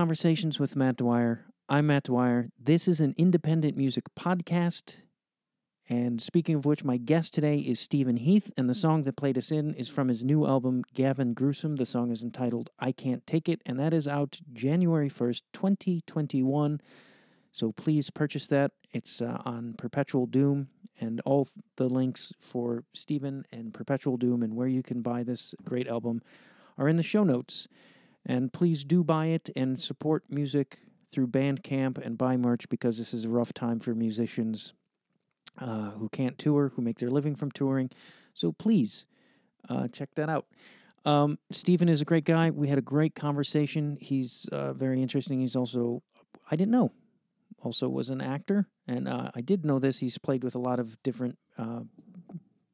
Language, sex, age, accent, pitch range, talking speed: English, male, 40-59, American, 125-155 Hz, 180 wpm